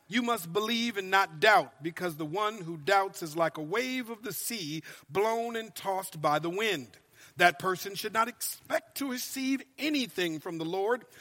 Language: English